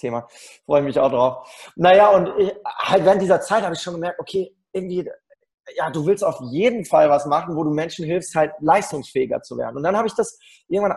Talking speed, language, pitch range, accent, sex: 225 wpm, German, 140-175 Hz, German, male